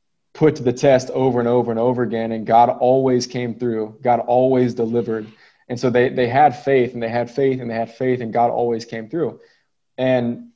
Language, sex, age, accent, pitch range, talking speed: English, male, 20-39, American, 120-140 Hz, 215 wpm